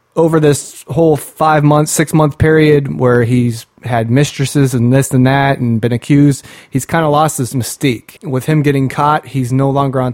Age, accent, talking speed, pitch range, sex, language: 30-49, American, 185 wpm, 125-140 Hz, male, English